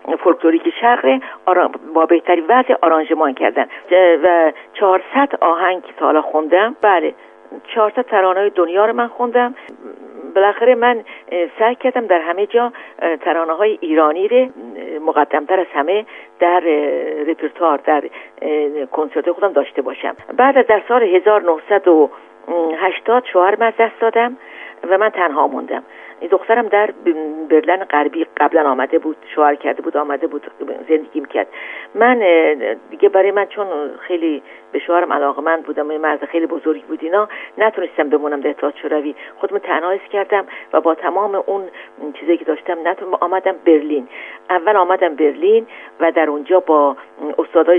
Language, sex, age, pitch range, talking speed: Persian, female, 50-69, 155-205 Hz, 135 wpm